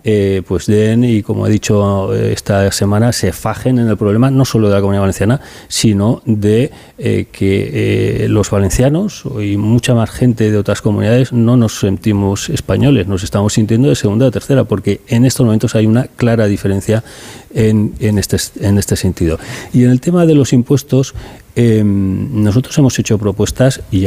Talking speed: 180 wpm